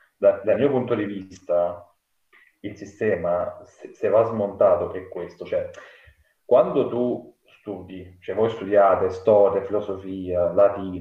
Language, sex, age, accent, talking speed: Italian, male, 30-49, native, 130 wpm